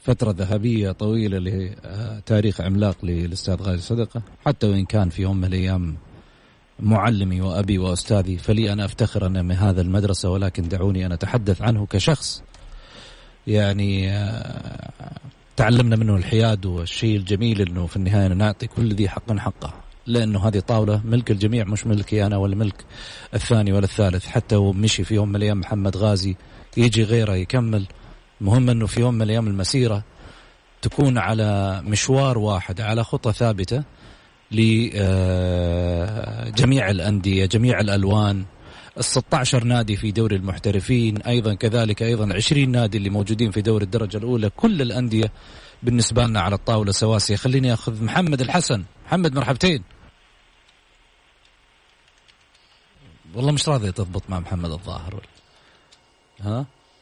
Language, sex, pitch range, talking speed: Arabic, male, 95-115 Hz, 130 wpm